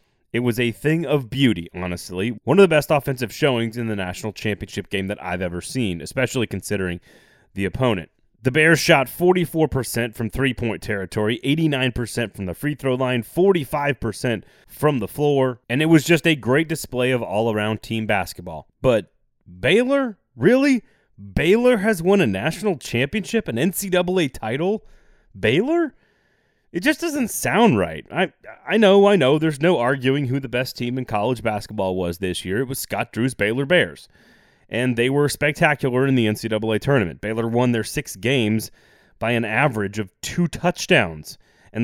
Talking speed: 170 wpm